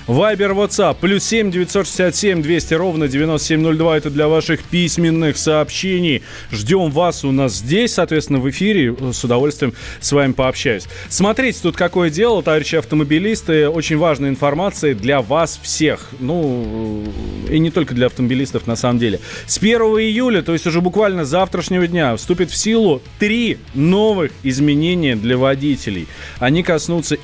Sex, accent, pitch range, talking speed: male, native, 130-175 Hz, 145 wpm